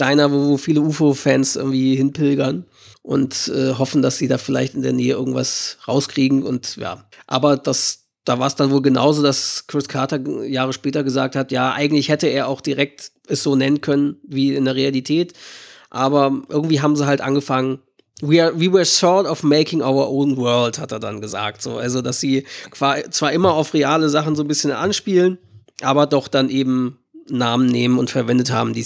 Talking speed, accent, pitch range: 190 wpm, German, 130-155 Hz